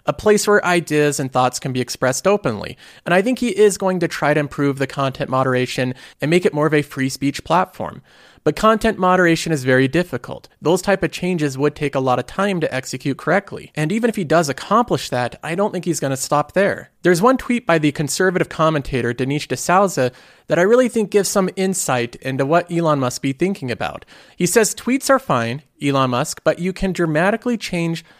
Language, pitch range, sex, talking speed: English, 135-185 Hz, male, 215 wpm